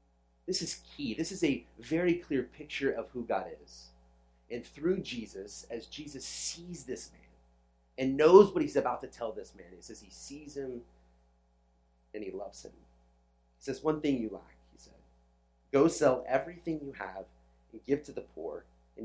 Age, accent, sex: 30-49, American, male